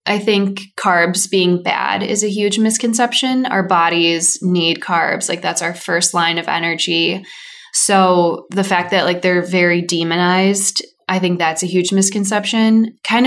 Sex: female